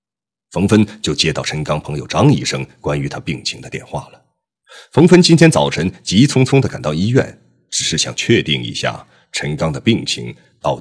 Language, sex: Chinese, male